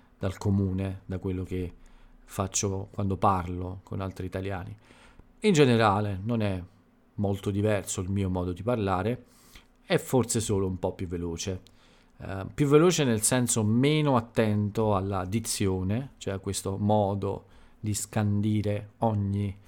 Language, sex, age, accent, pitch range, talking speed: Italian, male, 40-59, native, 95-110 Hz, 135 wpm